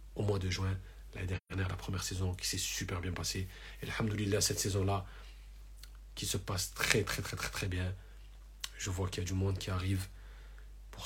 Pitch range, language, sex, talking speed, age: 95-100 Hz, French, male, 195 wpm, 40-59